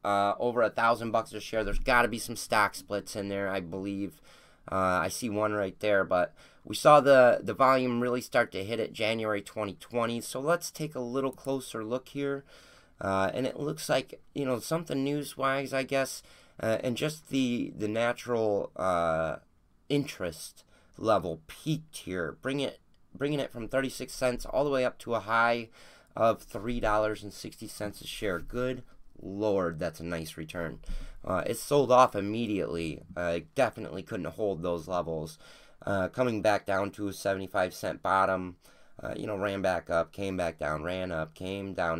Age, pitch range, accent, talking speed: 30-49, 100-125 Hz, American, 180 wpm